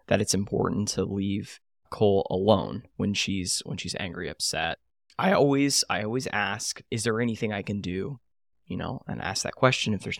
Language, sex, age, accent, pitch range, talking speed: English, male, 10-29, American, 100-120 Hz, 190 wpm